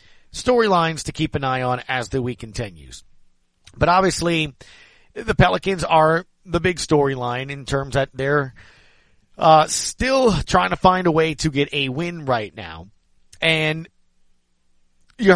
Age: 40-59